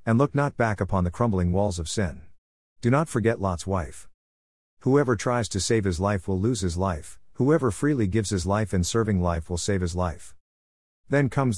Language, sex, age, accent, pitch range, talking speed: English, male, 50-69, American, 90-115 Hz, 200 wpm